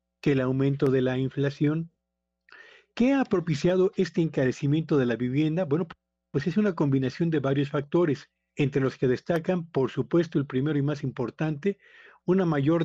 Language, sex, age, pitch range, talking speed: Spanish, male, 50-69, 130-165 Hz, 160 wpm